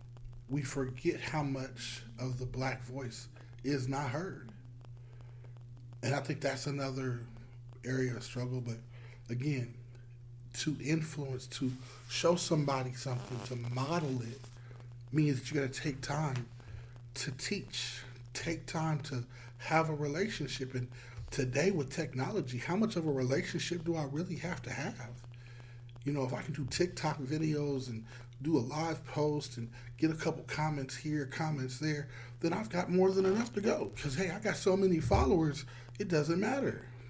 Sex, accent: male, American